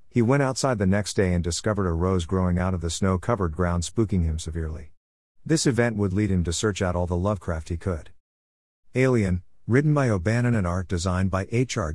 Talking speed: 205 wpm